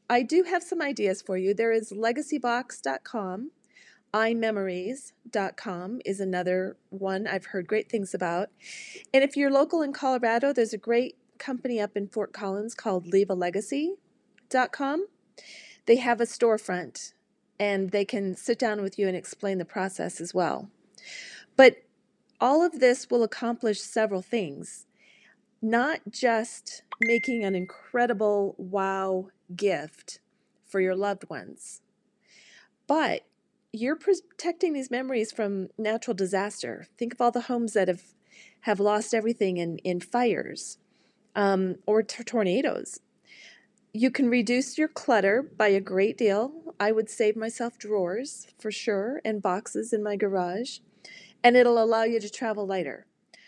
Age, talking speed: 30-49, 140 wpm